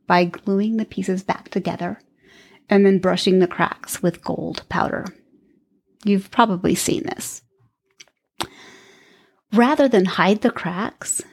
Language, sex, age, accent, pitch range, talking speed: English, female, 30-49, American, 185-230 Hz, 120 wpm